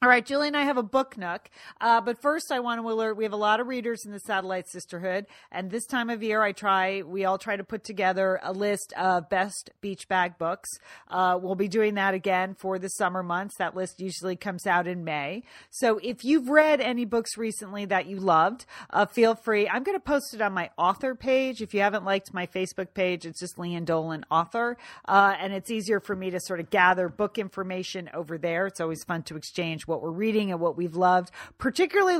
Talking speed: 230 wpm